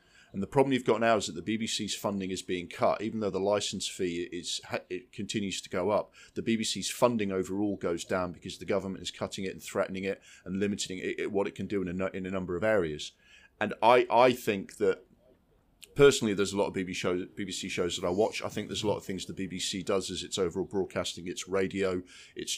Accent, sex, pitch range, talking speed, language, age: British, male, 90-115 Hz, 235 wpm, English, 40-59